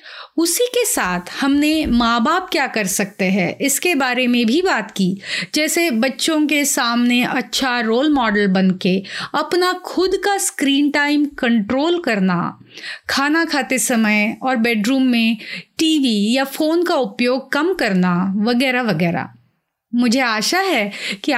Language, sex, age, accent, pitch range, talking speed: Hindi, female, 30-49, native, 210-295 Hz, 140 wpm